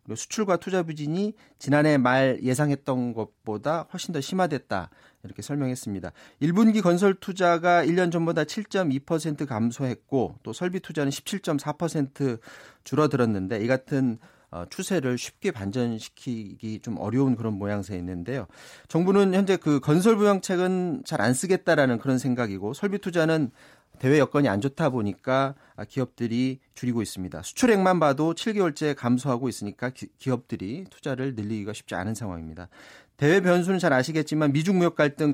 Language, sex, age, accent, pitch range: Korean, male, 40-59, native, 120-175 Hz